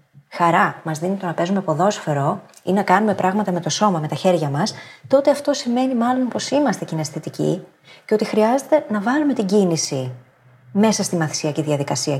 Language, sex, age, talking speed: Greek, female, 30-49, 175 wpm